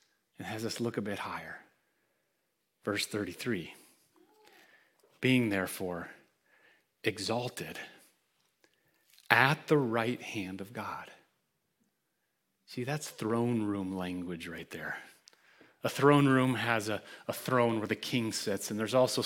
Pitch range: 130-195 Hz